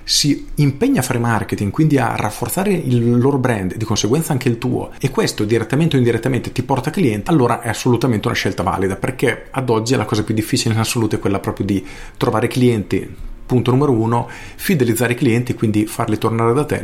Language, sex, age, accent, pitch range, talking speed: Italian, male, 40-59, native, 105-130 Hz, 200 wpm